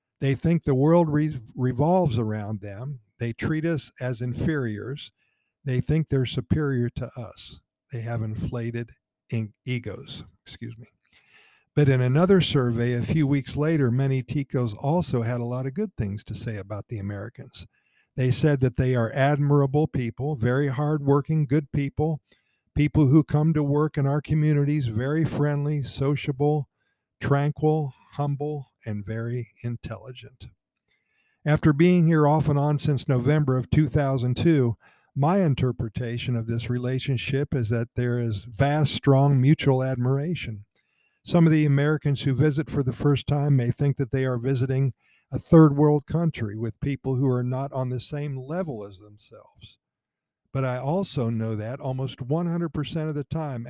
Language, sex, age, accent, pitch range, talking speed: English, male, 50-69, American, 120-150 Hz, 155 wpm